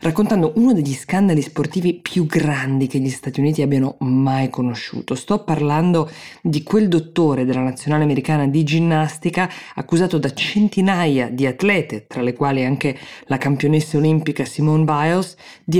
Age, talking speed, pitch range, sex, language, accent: 20-39, 150 wpm, 130-165 Hz, female, Italian, native